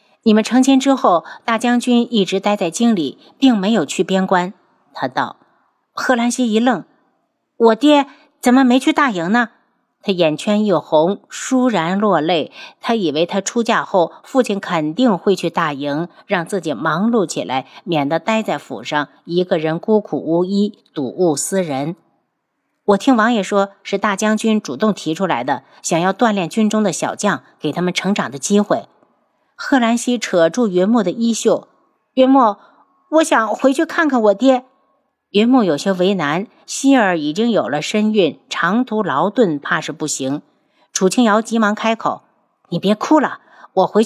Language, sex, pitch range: Chinese, female, 175-245 Hz